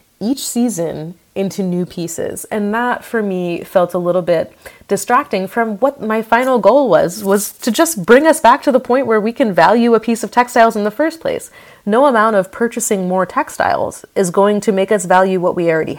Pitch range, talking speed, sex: 185-250 Hz, 210 wpm, female